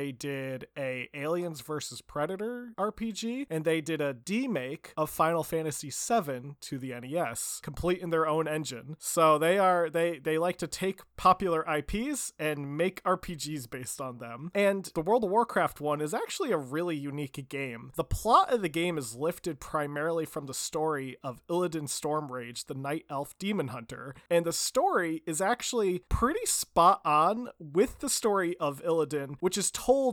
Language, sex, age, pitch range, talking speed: English, male, 20-39, 145-185 Hz, 175 wpm